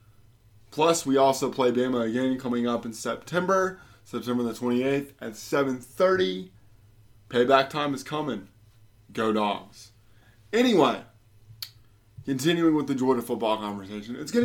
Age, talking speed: 20-39, 125 wpm